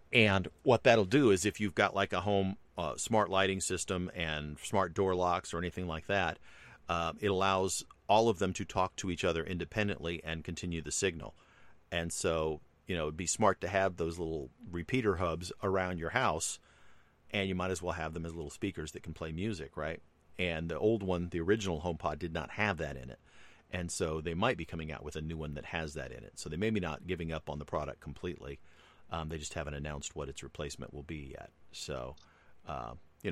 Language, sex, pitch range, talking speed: English, male, 75-95 Hz, 225 wpm